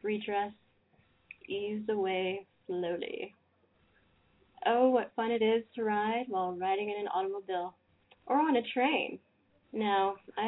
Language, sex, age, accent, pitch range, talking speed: English, female, 20-39, American, 185-230 Hz, 125 wpm